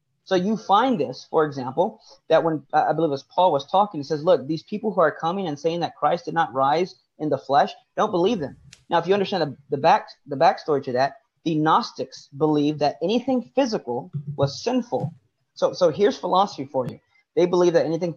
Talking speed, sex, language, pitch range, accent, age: 220 wpm, male, English, 145-190 Hz, American, 30-49